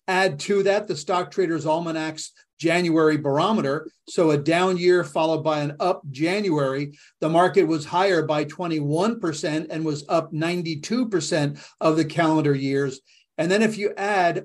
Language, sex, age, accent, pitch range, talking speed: English, male, 40-59, American, 155-180 Hz, 160 wpm